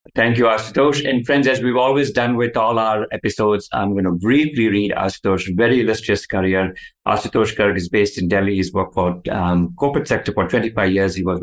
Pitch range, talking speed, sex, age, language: 90-115 Hz, 205 wpm, male, 50-69, English